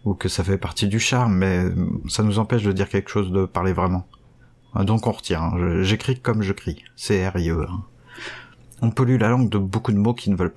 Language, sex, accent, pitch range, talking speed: French, male, French, 95-115 Hz, 220 wpm